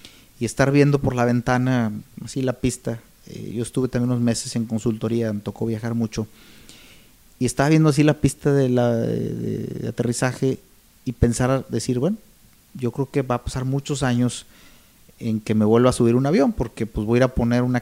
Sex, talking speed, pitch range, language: male, 200 wpm, 110-130 Hz, Spanish